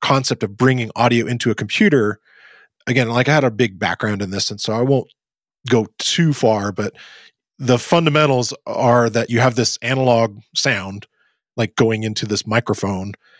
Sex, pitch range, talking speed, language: male, 105-130 Hz, 170 wpm, English